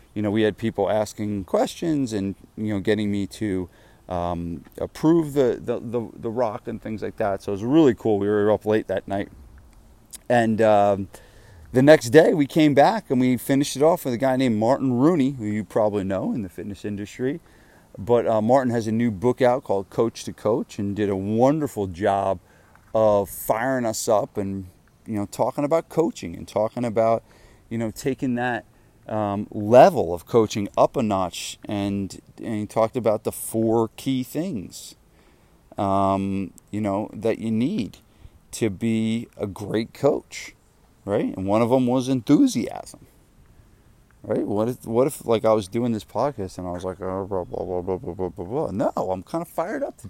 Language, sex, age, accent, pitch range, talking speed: English, male, 30-49, American, 100-130 Hz, 190 wpm